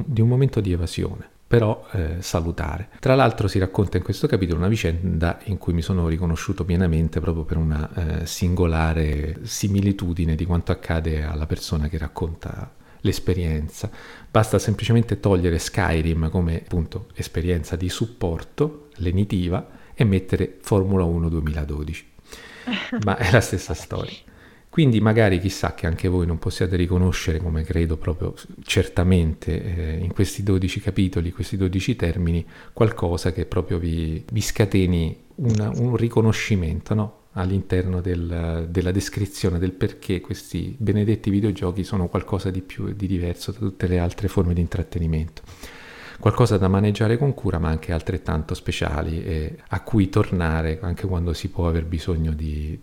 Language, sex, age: Italian, male, 40-59